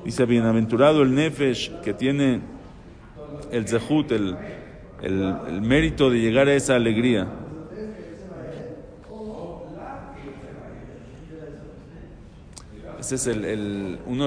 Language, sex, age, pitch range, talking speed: Spanish, male, 50-69, 115-150 Hz, 95 wpm